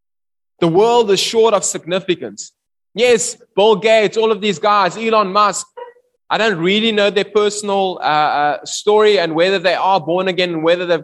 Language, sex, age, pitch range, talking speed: English, male, 20-39, 165-215 Hz, 175 wpm